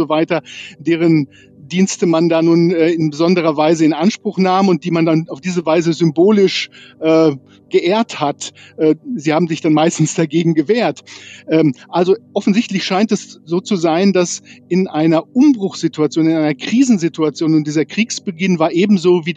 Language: German